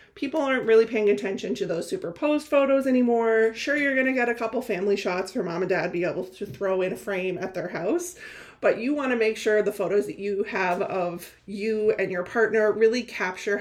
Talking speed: 220 wpm